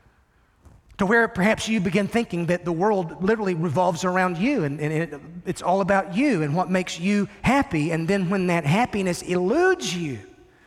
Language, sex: English, male